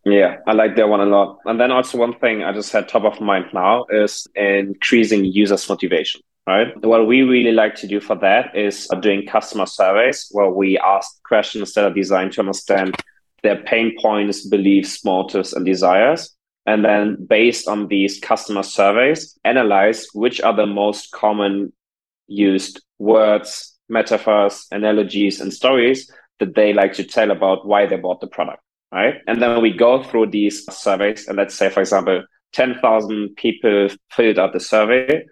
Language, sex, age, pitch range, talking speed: English, male, 20-39, 100-115 Hz, 170 wpm